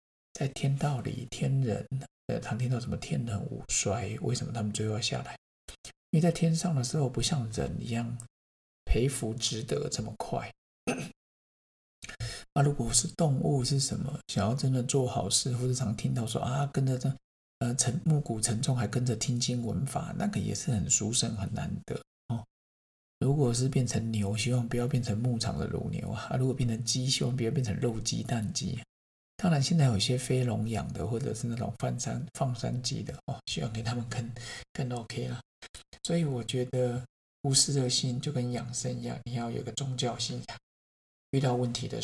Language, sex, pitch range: Chinese, male, 110-135 Hz